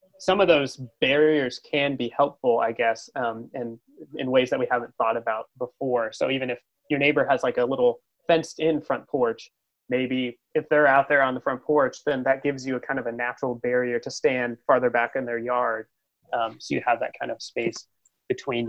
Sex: male